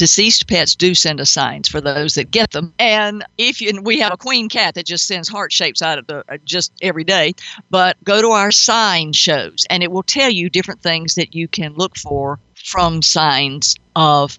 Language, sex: English, female